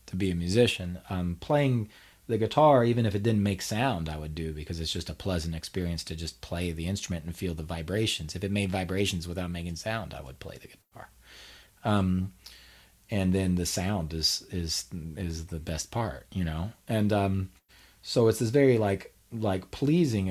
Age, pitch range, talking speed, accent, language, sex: 30-49, 90-115 Hz, 195 wpm, American, English, male